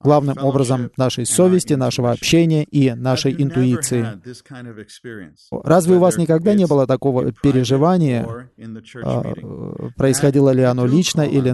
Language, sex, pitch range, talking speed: Russian, male, 130-165 Hz, 115 wpm